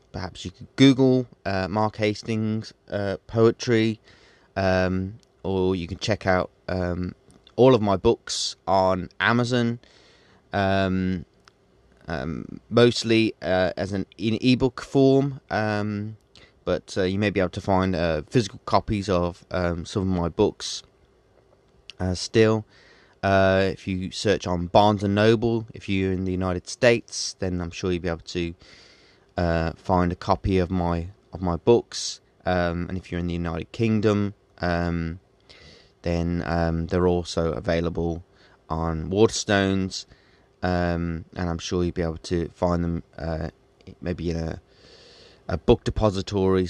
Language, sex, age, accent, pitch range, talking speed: English, male, 20-39, British, 85-105 Hz, 150 wpm